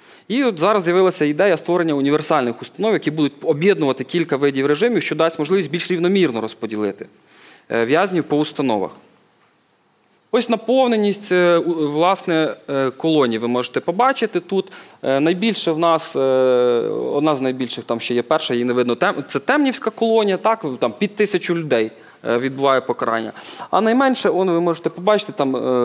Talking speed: 135 wpm